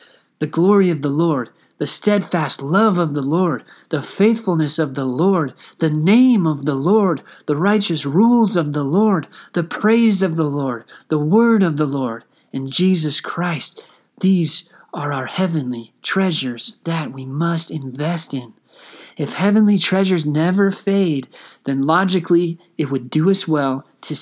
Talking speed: 155 wpm